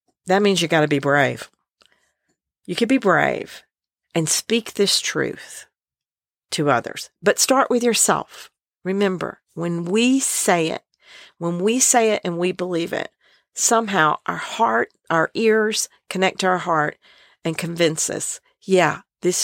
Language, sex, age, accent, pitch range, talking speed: English, female, 50-69, American, 165-220 Hz, 150 wpm